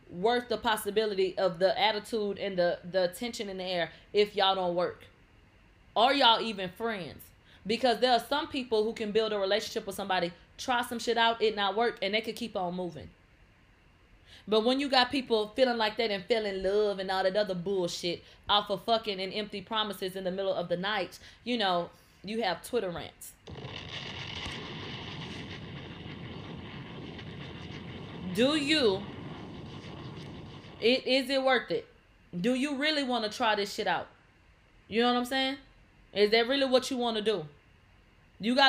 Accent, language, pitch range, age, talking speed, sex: American, English, 190-265 Hz, 20-39, 170 wpm, female